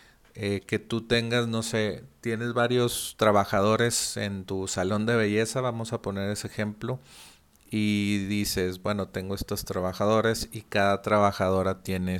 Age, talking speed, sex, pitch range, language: 40-59, 145 wpm, male, 95-110 Hz, Spanish